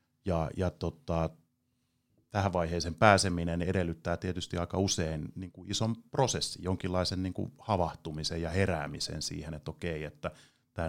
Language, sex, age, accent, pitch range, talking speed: Finnish, male, 30-49, native, 85-125 Hz, 140 wpm